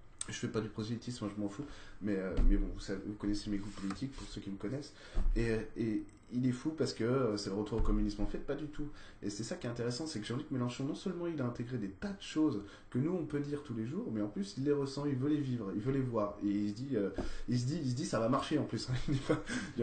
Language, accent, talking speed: French, French, 310 wpm